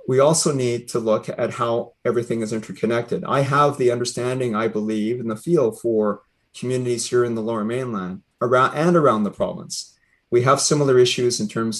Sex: male